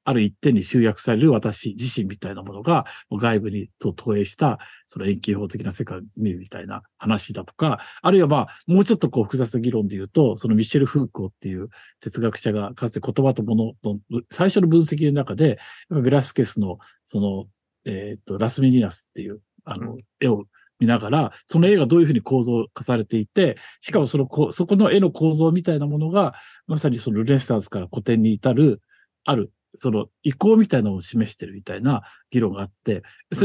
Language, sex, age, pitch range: Japanese, male, 50-69, 110-155 Hz